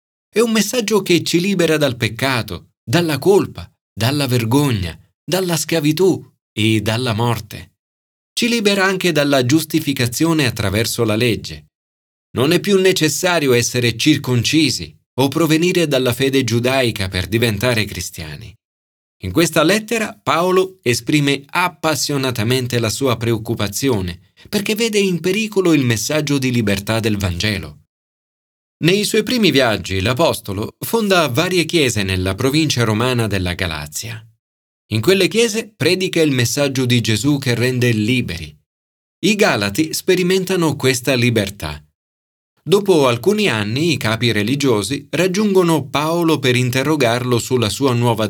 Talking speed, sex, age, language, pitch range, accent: 125 wpm, male, 30-49, Italian, 105-160 Hz, native